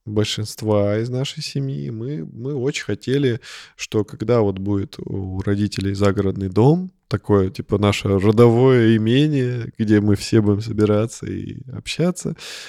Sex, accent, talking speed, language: male, native, 130 wpm, Russian